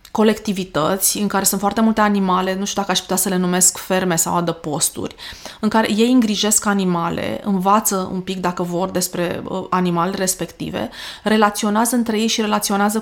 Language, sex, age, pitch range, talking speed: Romanian, female, 20-39, 180-215 Hz, 170 wpm